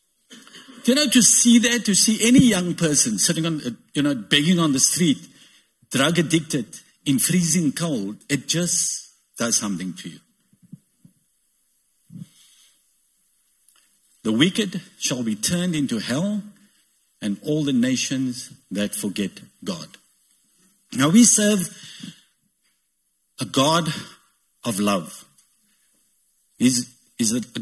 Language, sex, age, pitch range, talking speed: English, male, 50-69, 140-215 Hz, 115 wpm